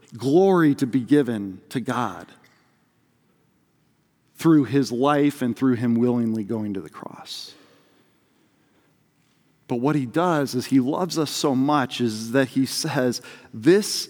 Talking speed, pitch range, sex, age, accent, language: 135 wpm, 140-215 Hz, male, 40-59, American, English